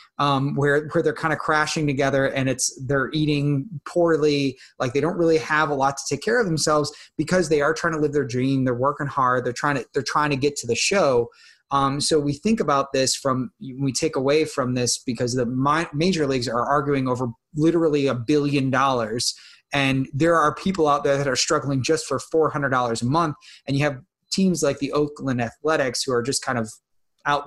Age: 30-49